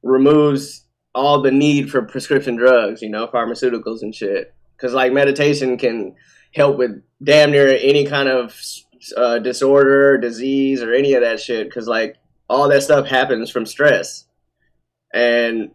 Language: English